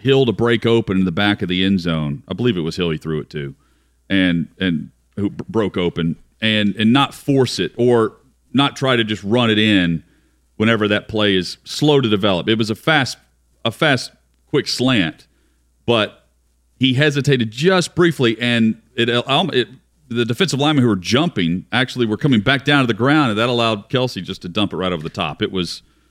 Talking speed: 205 wpm